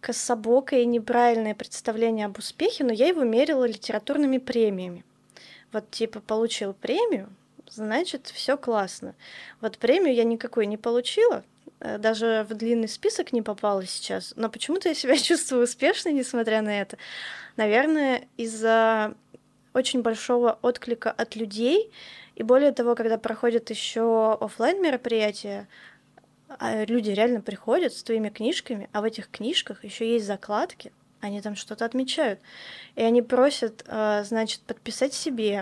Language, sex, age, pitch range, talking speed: Russian, female, 20-39, 225-260 Hz, 135 wpm